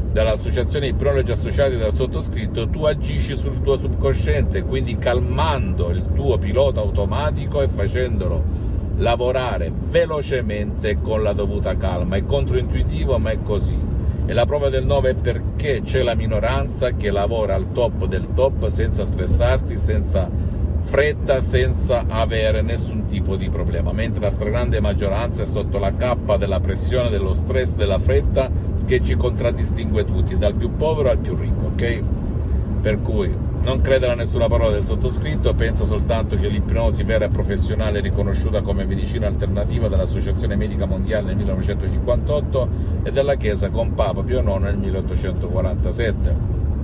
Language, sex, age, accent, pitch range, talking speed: Italian, male, 50-69, native, 85-105 Hz, 150 wpm